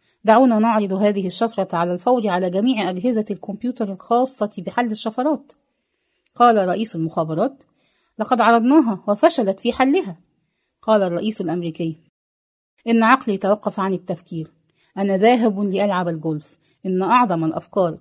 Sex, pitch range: female, 165-240 Hz